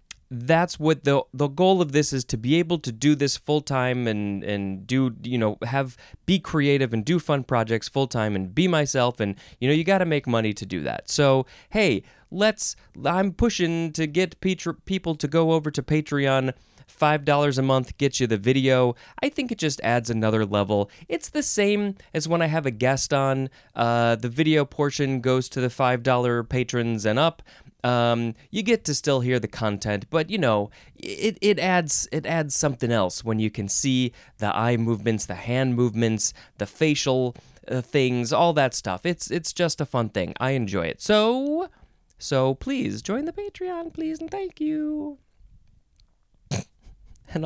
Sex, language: male, English